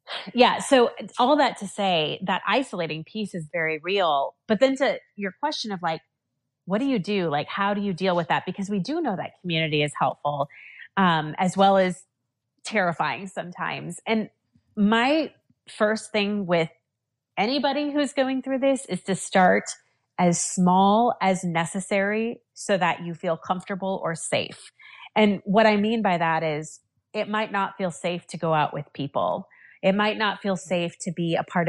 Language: English